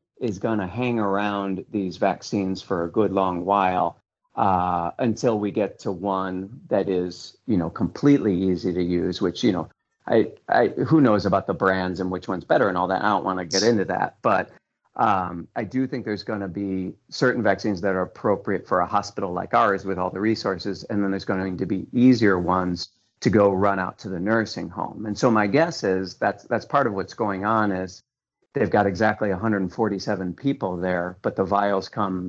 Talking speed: 210 wpm